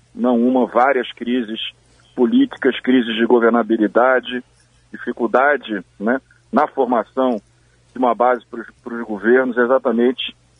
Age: 40-59